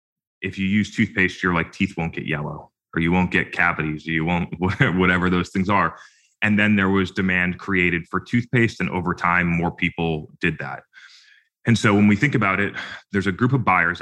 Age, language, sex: 30-49, English, male